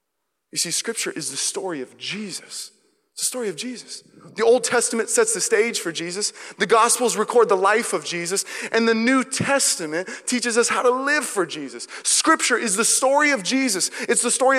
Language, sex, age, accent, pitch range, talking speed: English, male, 20-39, American, 175-265 Hz, 200 wpm